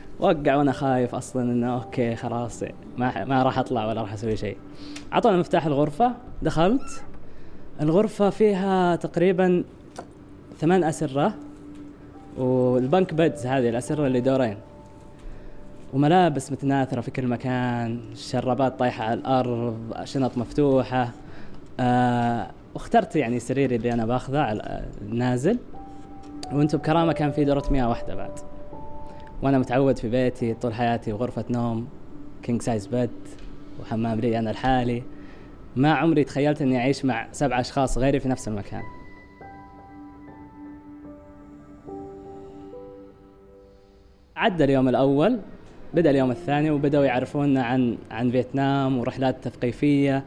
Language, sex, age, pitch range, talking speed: Arabic, female, 20-39, 110-145 Hz, 120 wpm